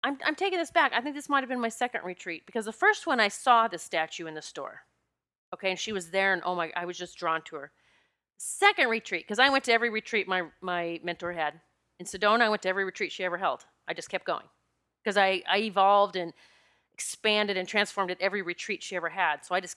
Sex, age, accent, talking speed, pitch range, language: female, 30-49, American, 250 wpm, 180-230 Hz, English